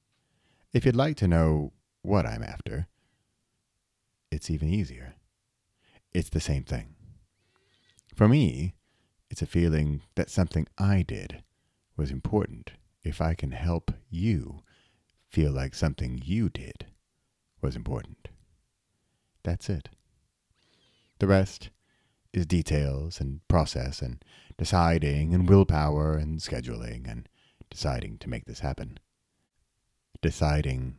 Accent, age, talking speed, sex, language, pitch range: American, 30-49, 115 wpm, male, English, 75-105 Hz